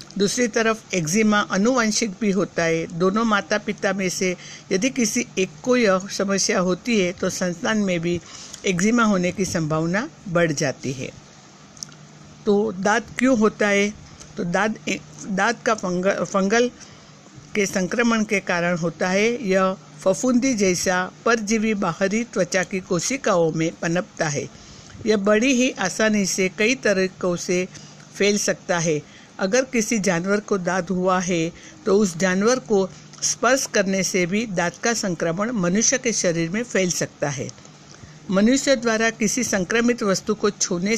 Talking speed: 150 wpm